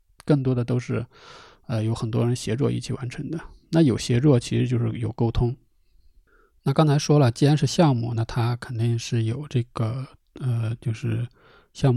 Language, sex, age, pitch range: Chinese, male, 20-39, 115-135 Hz